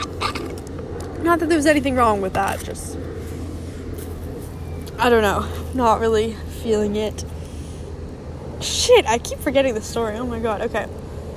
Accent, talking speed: American, 135 wpm